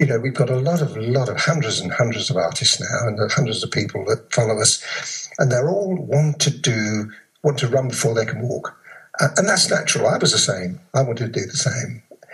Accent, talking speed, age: British, 240 wpm, 60-79